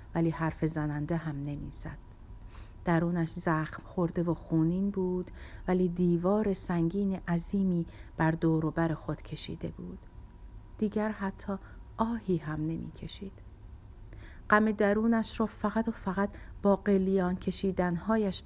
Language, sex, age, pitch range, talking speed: Persian, female, 50-69, 160-210 Hz, 115 wpm